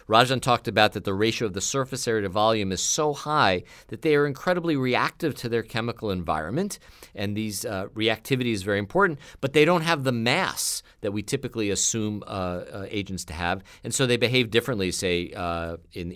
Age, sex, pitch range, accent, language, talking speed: 50-69, male, 95-125 Hz, American, English, 200 wpm